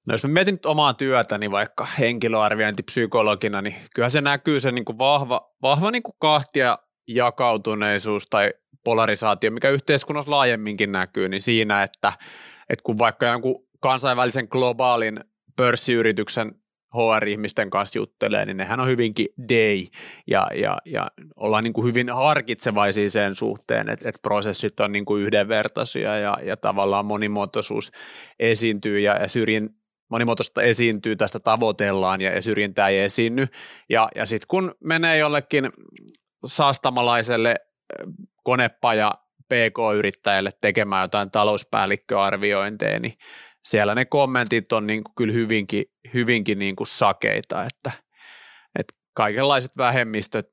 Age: 30-49